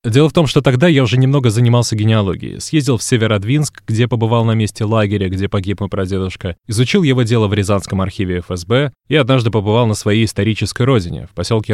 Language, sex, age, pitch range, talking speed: Russian, male, 20-39, 100-130 Hz, 195 wpm